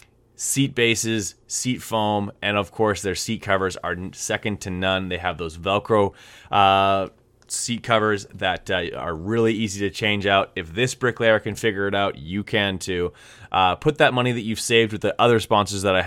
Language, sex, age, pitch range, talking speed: English, male, 20-39, 95-120 Hz, 195 wpm